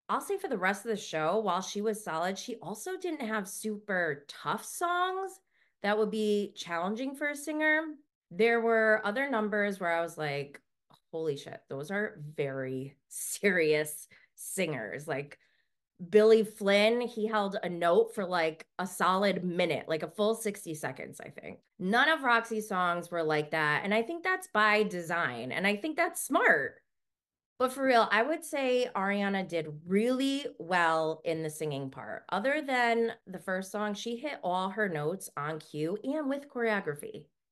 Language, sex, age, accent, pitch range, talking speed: English, female, 20-39, American, 165-235 Hz, 170 wpm